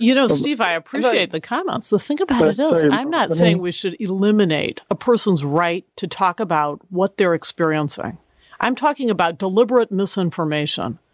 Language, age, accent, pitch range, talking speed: English, 50-69, American, 175-245 Hz, 170 wpm